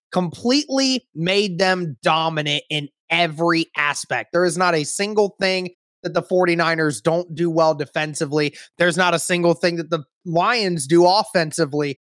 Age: 20-39